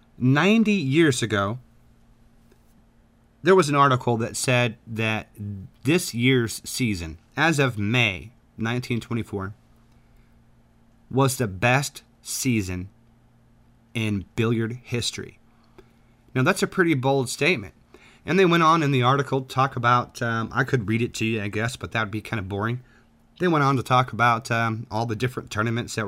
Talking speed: 155 wpm